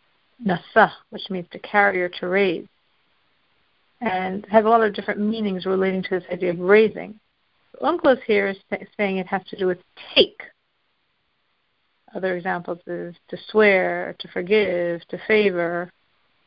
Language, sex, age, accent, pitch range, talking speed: English, female, 50-69, American, 190-250 Hz, 155 wpm